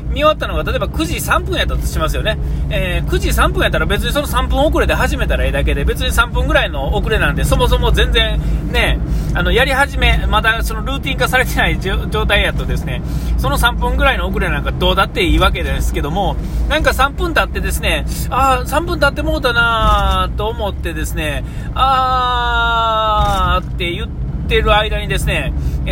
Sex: male